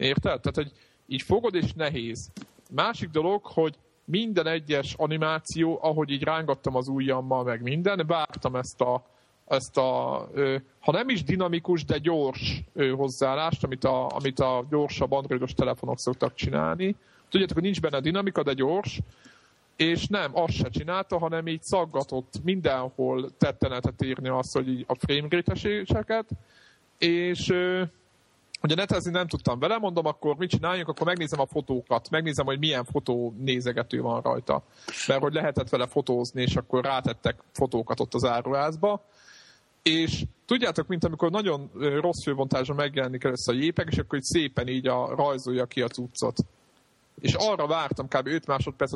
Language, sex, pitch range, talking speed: Hungarian, male, 130-165 Hz, 155 wpm